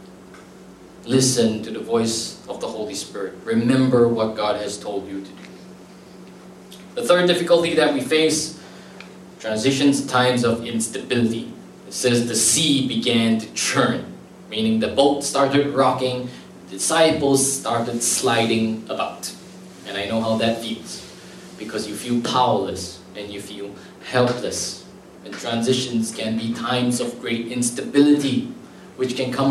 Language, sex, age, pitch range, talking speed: English, male, 20-39, 115-140 Hz, 135 wpm